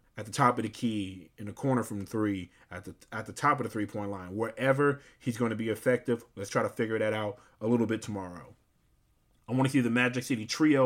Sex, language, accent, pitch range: male, English, American, 110-130 Hz